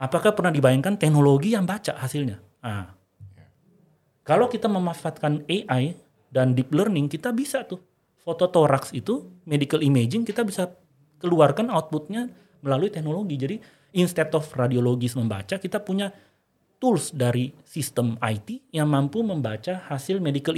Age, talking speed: 30-49, 130 wpm